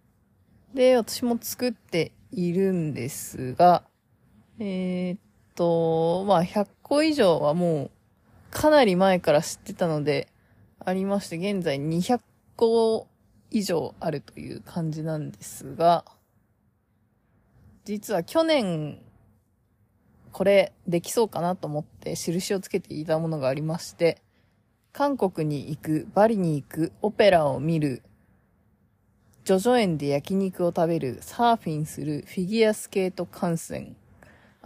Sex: female